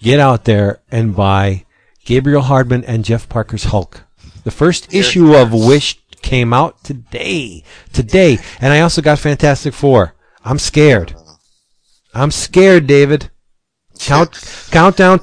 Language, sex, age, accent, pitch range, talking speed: English, male, 40-59, American, 110-170 Hz, 135 wpm